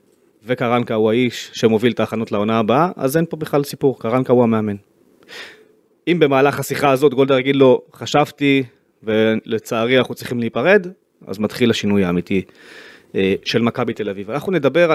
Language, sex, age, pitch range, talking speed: Hebrew, male, 30-49, 110-150 Hz, 155 wpm